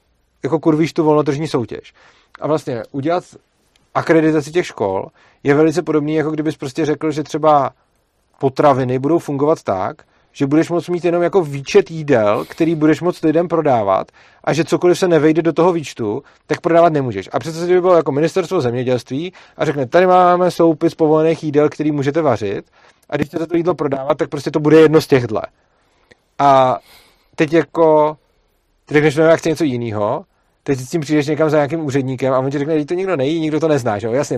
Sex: male